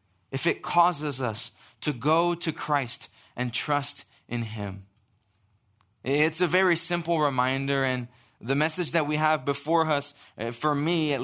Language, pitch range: English, 115-170 Hz